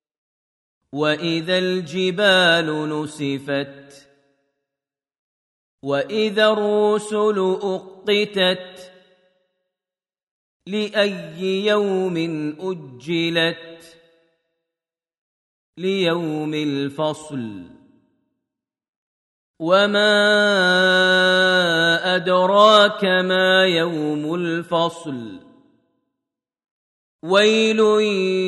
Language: Arabic